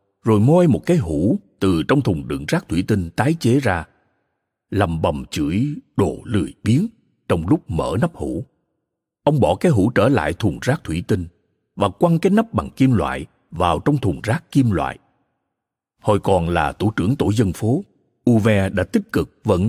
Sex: male